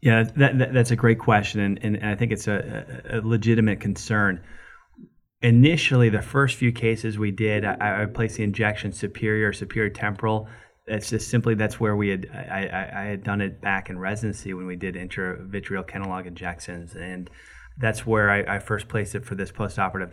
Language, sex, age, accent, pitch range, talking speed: English, male, 30-49, American, 95-110 Hz, 195 wpm